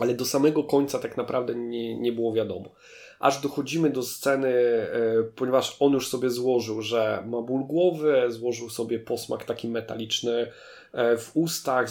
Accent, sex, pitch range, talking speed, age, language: native, male, 120-140 Hz, 150 wpm, 20-39, Polish